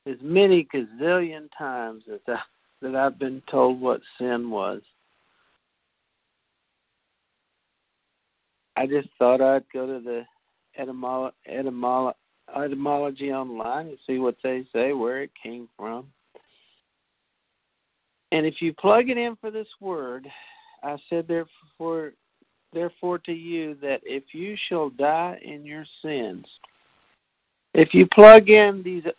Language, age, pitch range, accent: English, 50-69, 135-195 Hz, American